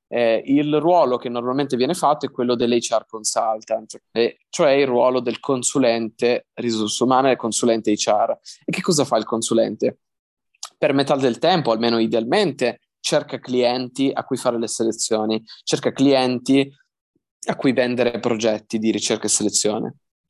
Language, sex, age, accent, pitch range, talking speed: Italian, male, 20-39, native, 115-145 Hz, 150 wpm